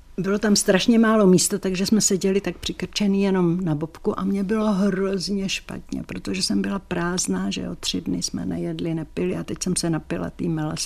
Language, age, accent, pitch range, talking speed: Czech, 60-79, native, 145-195 Hz, 195 wpm